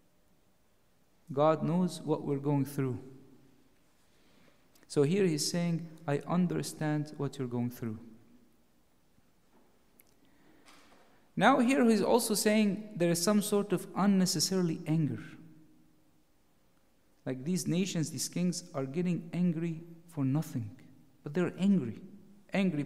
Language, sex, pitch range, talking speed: English, male, 135-180 Hz, 110 wpm